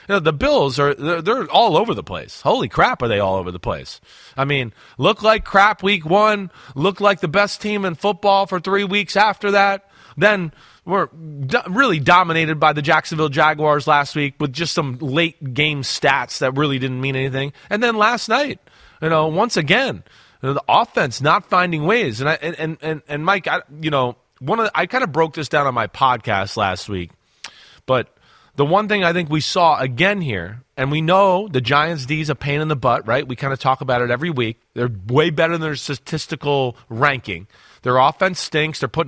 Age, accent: 30-49, American